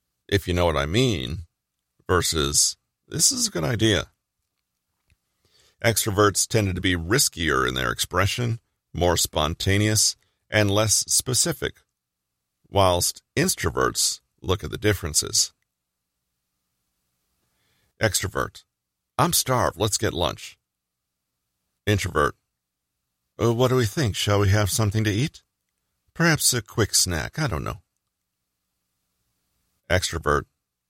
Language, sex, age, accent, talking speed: English, male, 40-59, American, 110 wpm